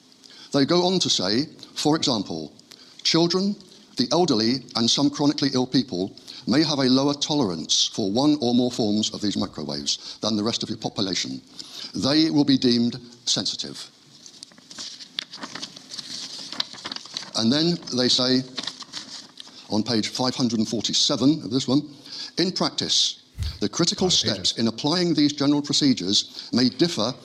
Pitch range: 115-155 Hz